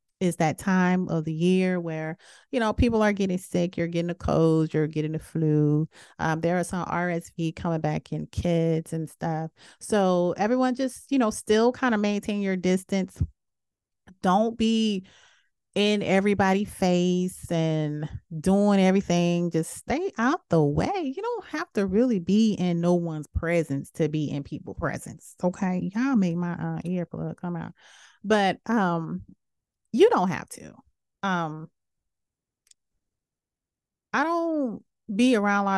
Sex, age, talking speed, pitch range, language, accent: female, 30-49, 155 wpm, 170-220 Hz, English, American